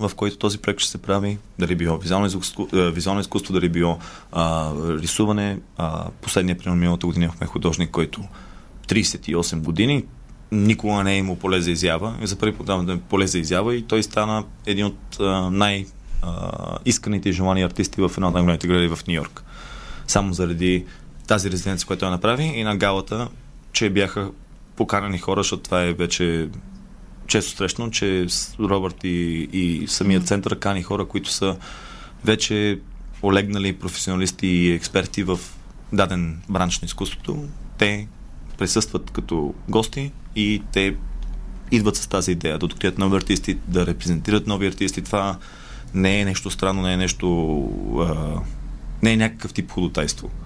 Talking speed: 150 wpm